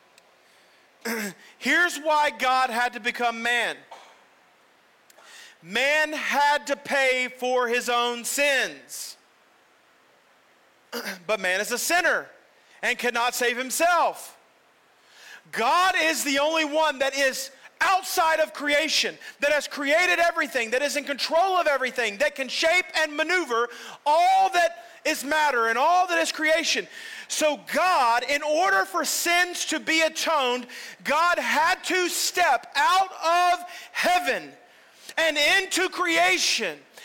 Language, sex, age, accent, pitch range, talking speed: English, male, 40-59, American, 250-340 Hz, 125 wpm